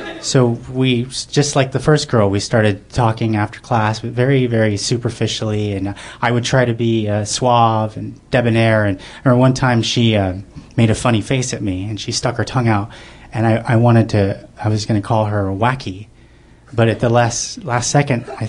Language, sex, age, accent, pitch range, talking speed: English, male, 30-49, American, 105-130 Hz, 205 wpm